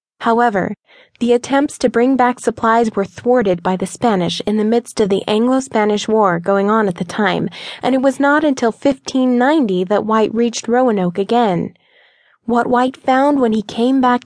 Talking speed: 175 wpm